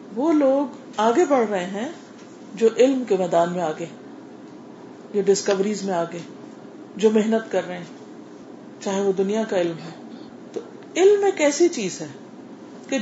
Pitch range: 195-285 Hz